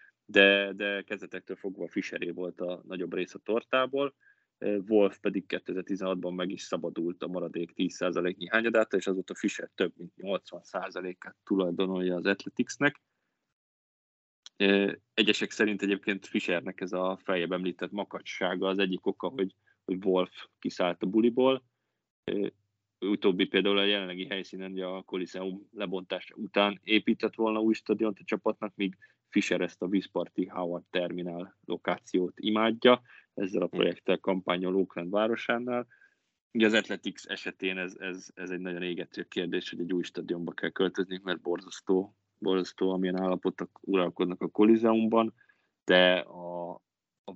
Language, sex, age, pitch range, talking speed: Hungarian, male, 20-39, 90-105 Hz, 135 wpm